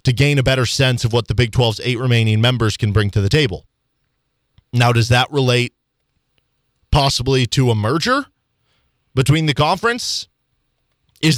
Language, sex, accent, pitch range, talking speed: English, male, American, 120-150 Hz, 160 wpm